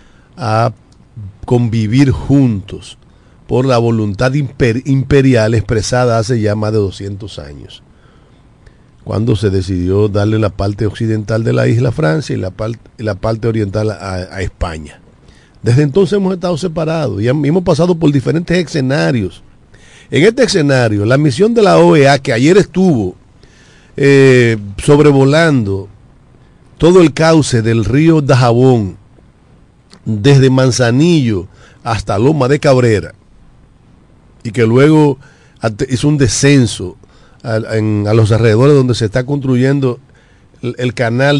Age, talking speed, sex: 50-69, 120 wpm, male